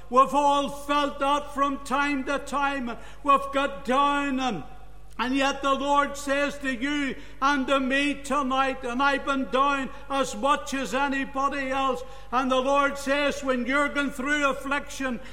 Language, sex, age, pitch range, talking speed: English, male, 60-79, 260-280 Hz, 160 wpm